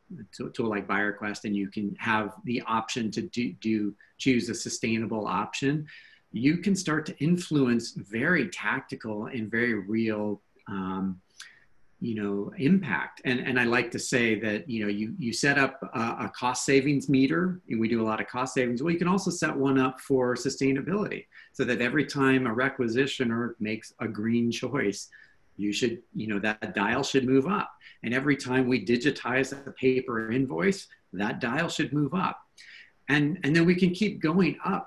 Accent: American